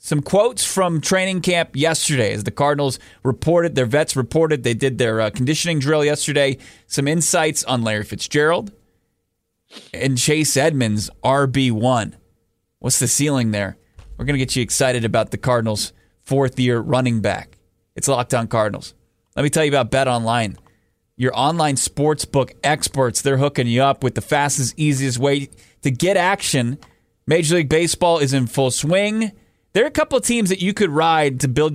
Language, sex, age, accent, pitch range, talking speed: English, male, 20-39, American, 115-150 Hz, 175 wpm